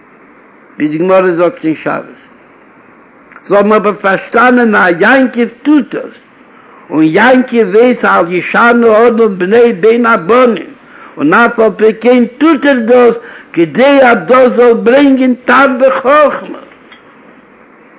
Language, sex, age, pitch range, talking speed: Hebrew, male, 60-79, 205-250 Hz, 90 wpm